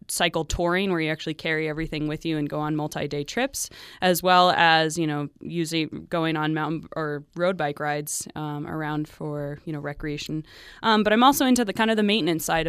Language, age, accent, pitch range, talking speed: English, 20-39, American, 160-185 Hz, 210 wpm